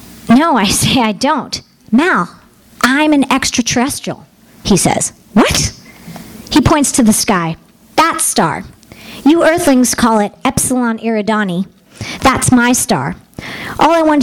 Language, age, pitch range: English, 40-59, 205-250 Hz